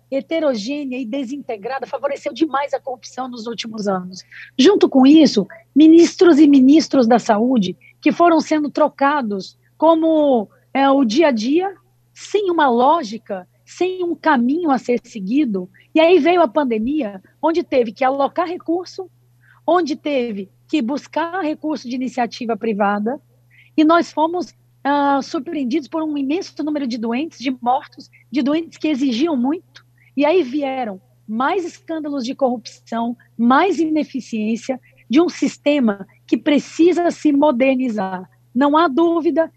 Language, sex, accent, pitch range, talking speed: Portuguese, female, Brazilian, 240-310 Hz, 140 wpm